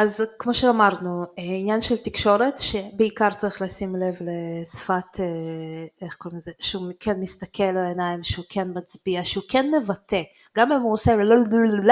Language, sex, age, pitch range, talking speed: Hebrew, female, 20-39, 175-215 Hz, 150 wpm